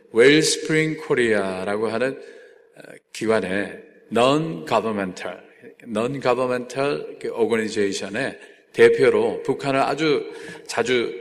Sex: male